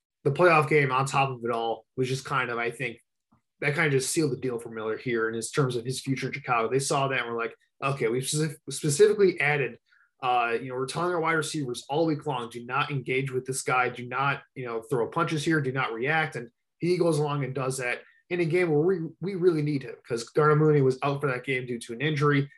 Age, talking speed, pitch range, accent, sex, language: 20-39, 260 wpm, 125-155 Hz, American, male, English